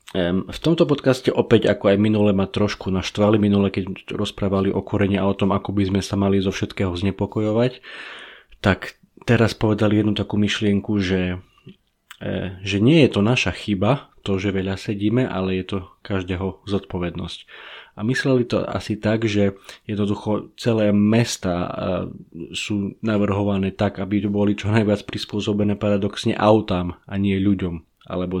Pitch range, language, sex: 95-105 Hz, Slovak, male